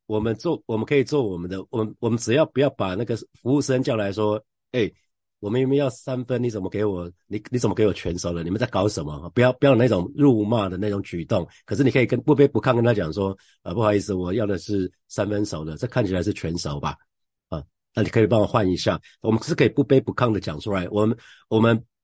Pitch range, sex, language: 95-130 Hz, male, Chinese